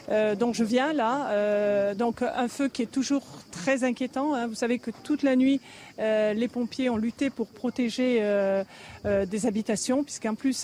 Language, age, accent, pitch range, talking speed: French, 40-59, French, 205-245 Hz, 190 wpm